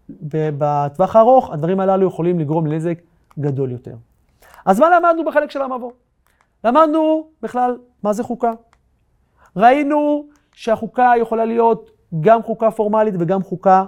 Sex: male